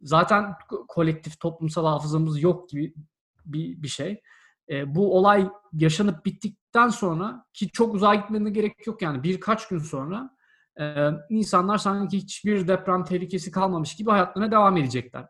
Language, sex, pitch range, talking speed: Turkish, male, 160-215 Hz, 140 wpm